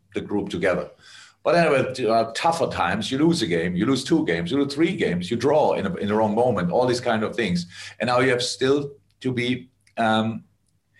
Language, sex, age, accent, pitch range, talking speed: English, male, 50-69, German, 110-140 Hz, 230 wpm